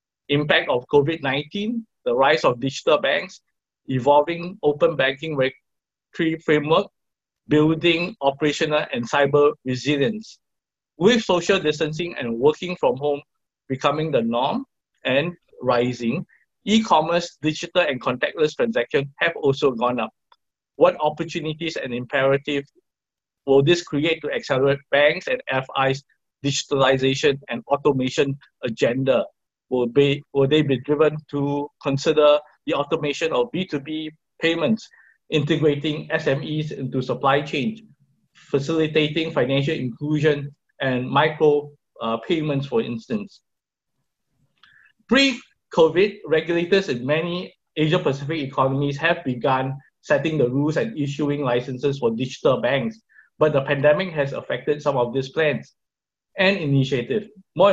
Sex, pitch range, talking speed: male, 140-170 Hz, 115 wpm